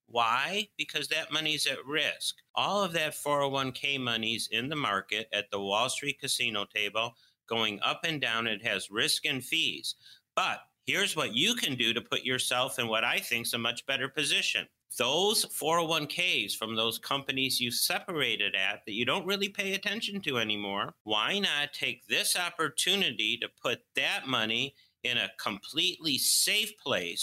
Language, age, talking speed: English, 50-69, 170 wpm